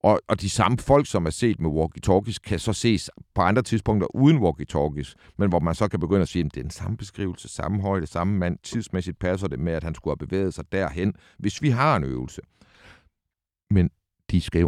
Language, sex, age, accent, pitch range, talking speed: Danish, male, 60-79, native, 80-105 Hz, 220 wpm